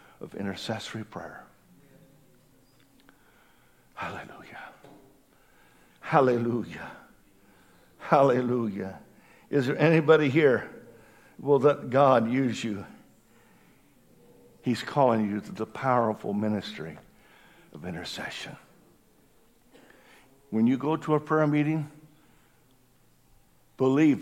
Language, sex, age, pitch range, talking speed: English, male, 60-79, 110-155 Hz, 80 wpm